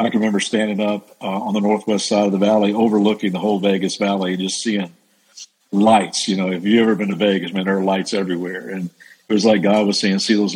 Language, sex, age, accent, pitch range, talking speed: English, male, 50-69, American, 100-120 Hz, 250 wpm